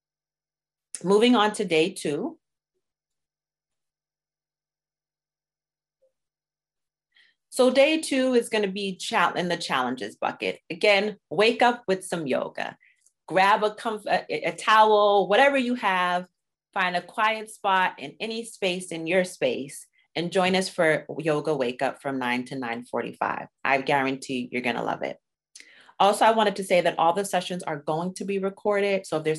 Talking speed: 155 wpm